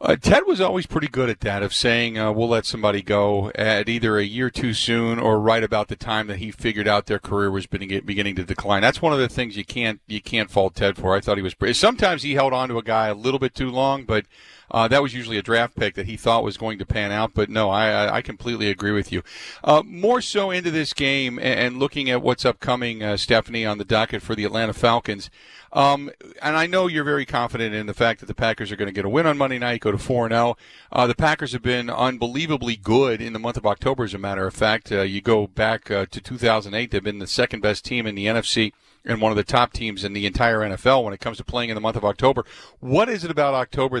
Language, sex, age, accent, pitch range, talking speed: English, male, 40-59, American, 105-130 Hz, 260 wpm